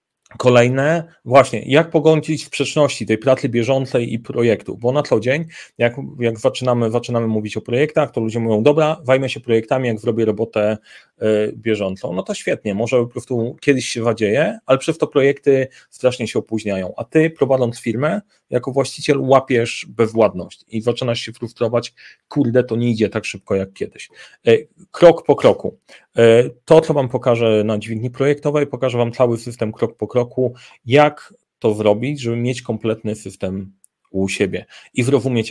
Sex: male